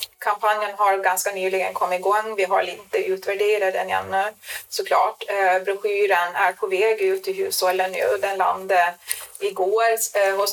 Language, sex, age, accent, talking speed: Swedish, female, 30-49, native, 155 wpm